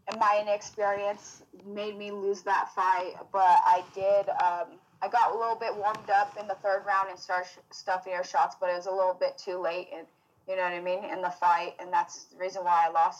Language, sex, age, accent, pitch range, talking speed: English, female, 20-39, American, 180-205 Hz, 230 wpm